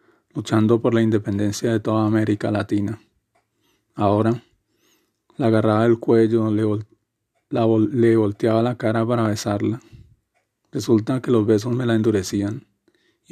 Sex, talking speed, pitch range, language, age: male, 140 wpm, 110-115 Hz, Spanish, 40-59